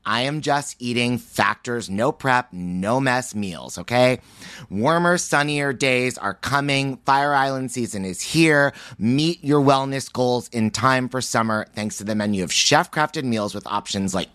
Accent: American